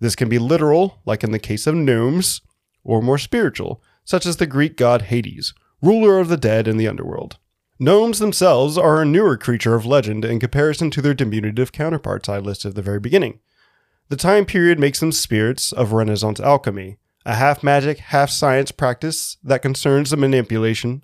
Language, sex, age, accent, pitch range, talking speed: English, male, 30-49, American, 115-160 Hz, 180 wpm